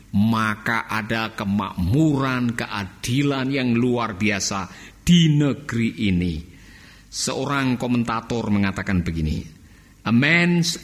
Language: Indonesian